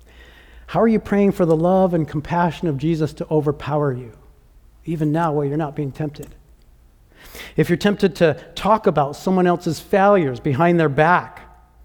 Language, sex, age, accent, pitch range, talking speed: English, male, 50-69, American, 140-185 Hz, 165 wpm